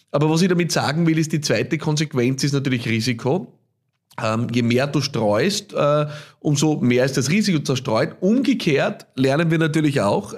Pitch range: 130-160 Hz